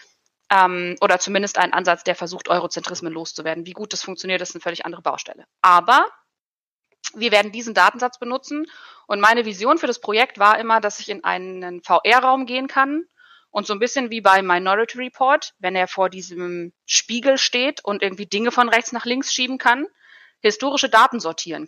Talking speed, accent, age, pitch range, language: 175 wpm, German, 30-49, 185-250 Hz, German